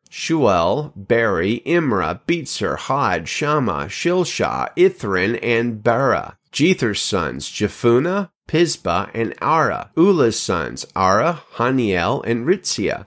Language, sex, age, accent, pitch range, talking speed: English, male, 30-49, American, 105-135 Hz, 100 wpm